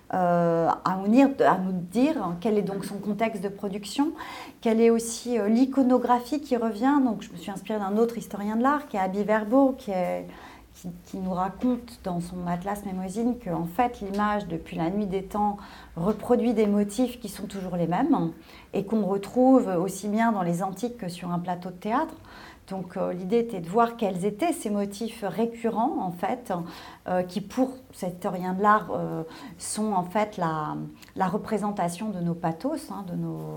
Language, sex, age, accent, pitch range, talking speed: French, female, 30-49, French, 180-230 Hz, 195 wpm